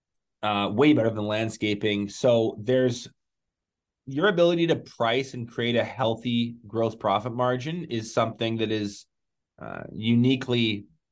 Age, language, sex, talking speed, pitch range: 20-39, English, male, 130 wpm, 110-125 Hz